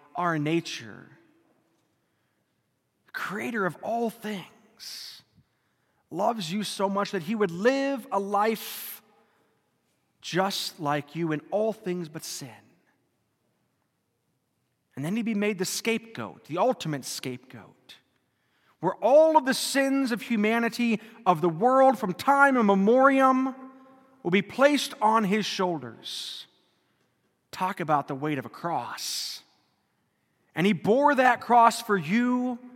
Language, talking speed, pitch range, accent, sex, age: English, 125 wpm, 150-230 Hz, American, male, 30-49